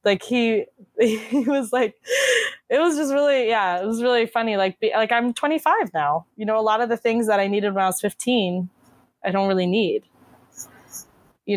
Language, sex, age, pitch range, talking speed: English, female, 20-39, 190-240 Hz, 195 wpm